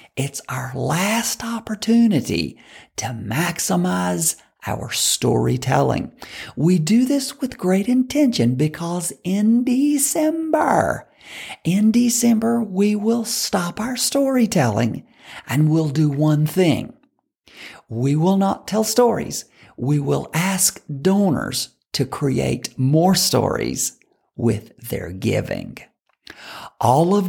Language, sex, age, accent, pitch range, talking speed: English, male, 50-69, American, 150-220 Hz, 105 wpm